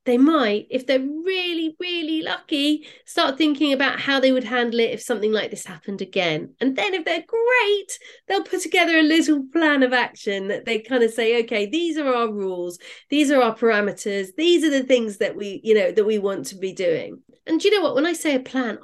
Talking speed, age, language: 225 wpm, 40-59, English